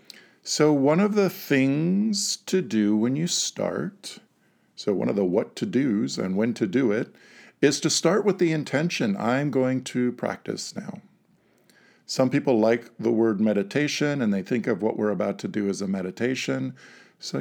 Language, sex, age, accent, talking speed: English, male, 50-69, American, 180 wpm